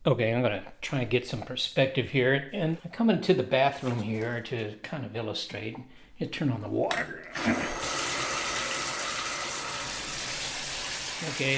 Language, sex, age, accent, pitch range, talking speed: English, male, 60-79, American, 135-185 Hz, 135 wpm